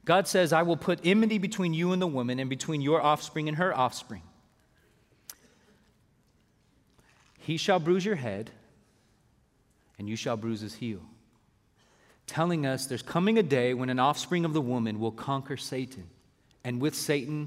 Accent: American